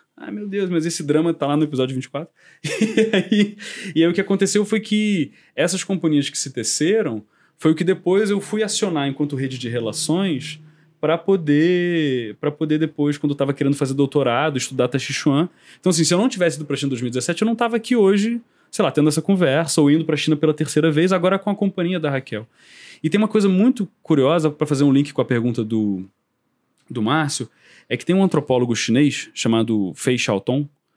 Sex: male